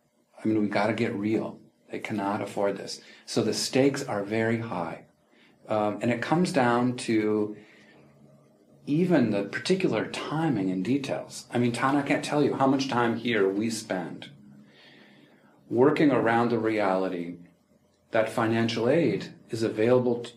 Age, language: 40-59, English